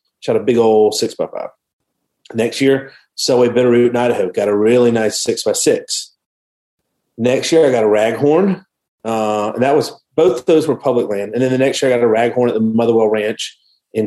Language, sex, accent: English, male, American